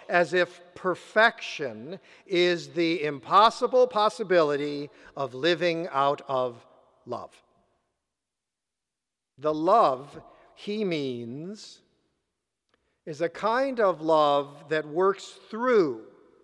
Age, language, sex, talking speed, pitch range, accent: 50-69, English, male, 90 wpm, 135-185 Hz, American